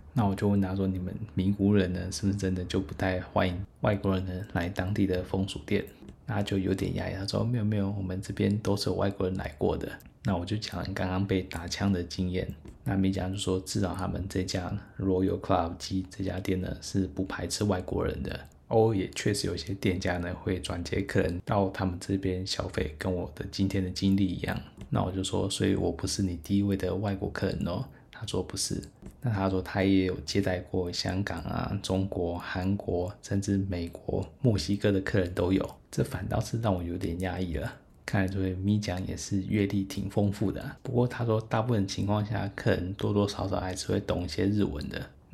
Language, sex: Chinese, male